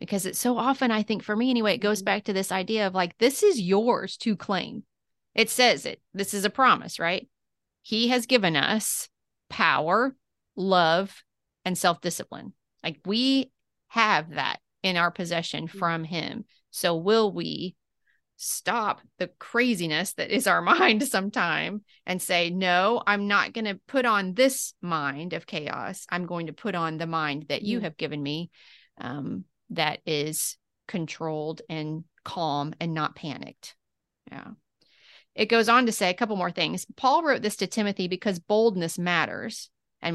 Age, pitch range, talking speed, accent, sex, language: 30-49, 170-225 Hz, 165 wpm, American, female, English